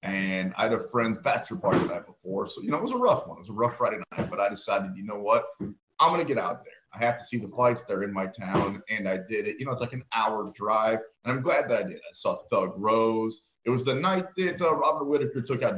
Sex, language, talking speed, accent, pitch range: male, English, 285 wpm, American, 115-150 Hz